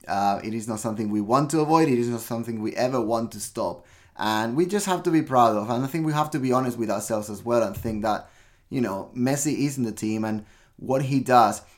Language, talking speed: English, 265 wpm